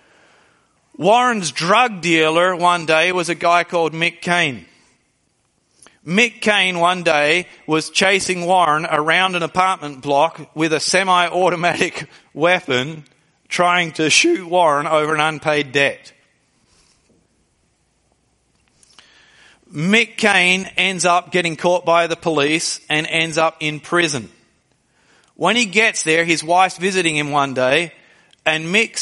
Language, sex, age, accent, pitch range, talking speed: English, male, 40-59, Australian, 155-185 Hz, 125 wpm